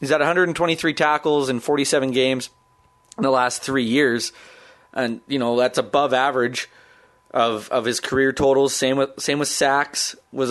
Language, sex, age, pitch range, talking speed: English, male, 20-39, 120-140 Hz, 165 wpm